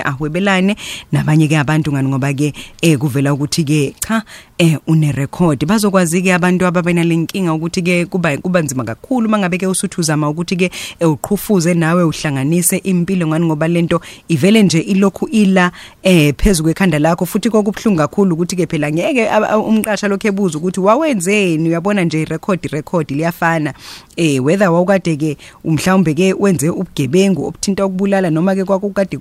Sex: female